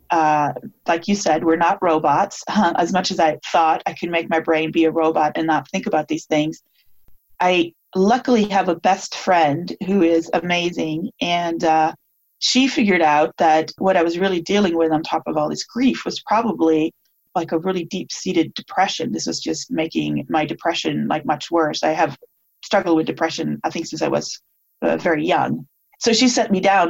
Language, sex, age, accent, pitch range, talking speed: English, female, 30-49, American, 160-190 Hz, 200 wpm